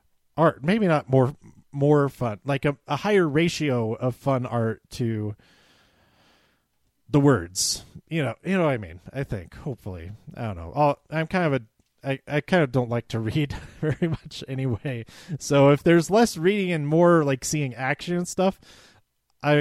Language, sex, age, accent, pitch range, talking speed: English, male, 30-49, American, 115-155 Hz, 180 wpm